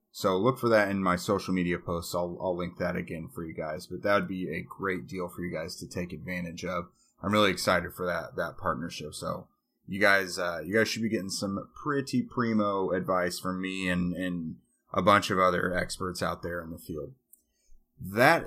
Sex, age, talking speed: male, 30-49, 215 wpm